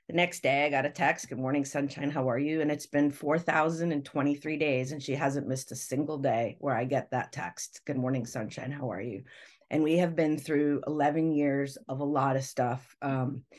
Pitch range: 140-160 Hz